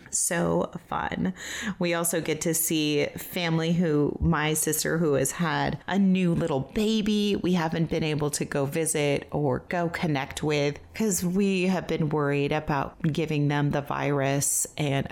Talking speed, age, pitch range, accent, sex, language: 160 wpm, 30-49, 155-195 Hz, American, female, English